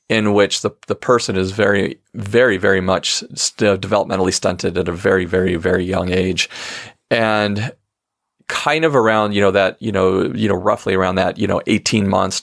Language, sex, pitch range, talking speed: English, male, 95-110 Hz, 180 wpm